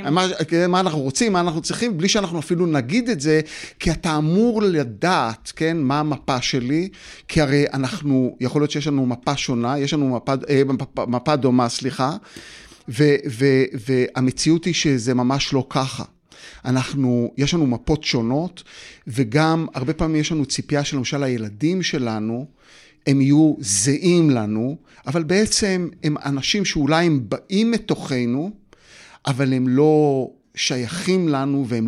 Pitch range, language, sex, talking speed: 130-160 Hz, Hebrew, male, 150 wpm